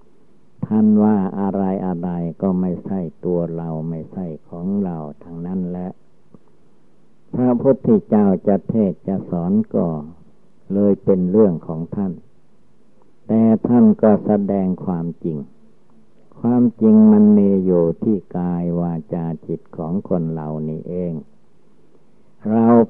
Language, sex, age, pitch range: Thai, male, 60-79, 85-105 Hz